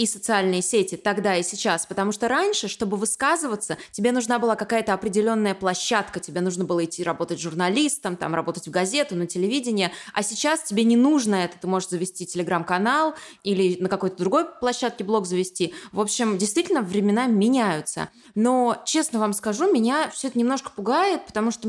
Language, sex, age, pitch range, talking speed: Russian, female, 20-39, 190-275 Hz, 170 wpm